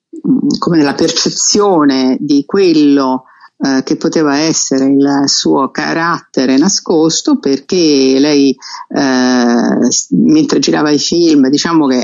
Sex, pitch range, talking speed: female, 135-180 Hz, 110 wpm